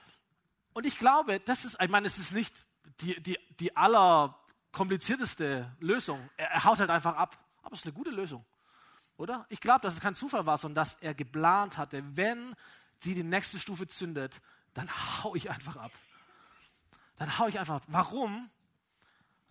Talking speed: 180 wpm